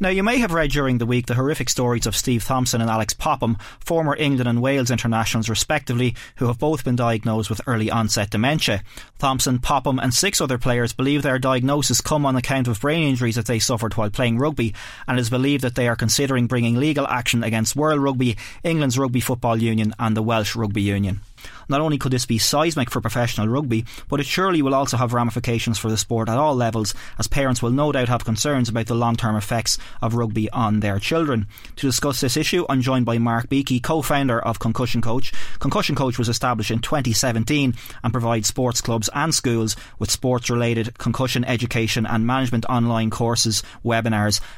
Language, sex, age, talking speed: English, male, 30-49, 200 wpm